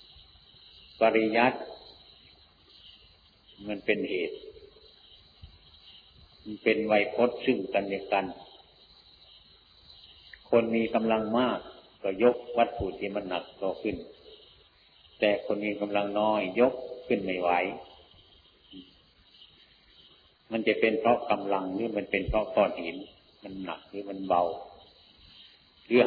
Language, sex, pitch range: Thai, male, 85-115 Hz